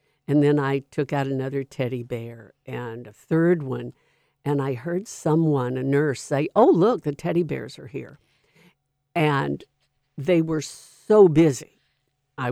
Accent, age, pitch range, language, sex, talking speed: American, 60-79, 140-160 Hz, English, female, 155 wpm